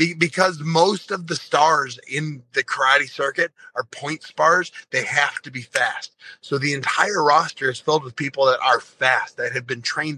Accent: American